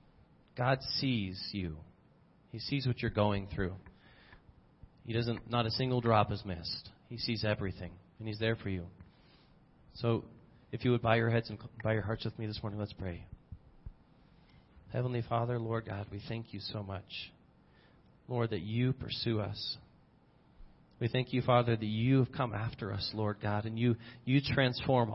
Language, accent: English, American